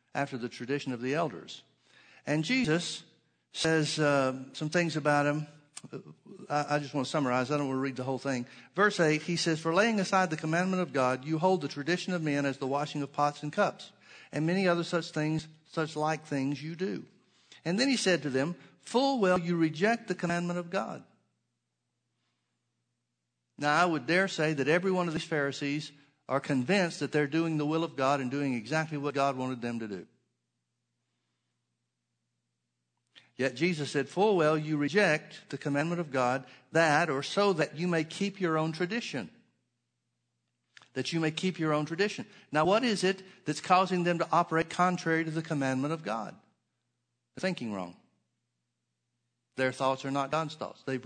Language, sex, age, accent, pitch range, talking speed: English, male, 50-69, American, 130-170 Hz, 185 wpm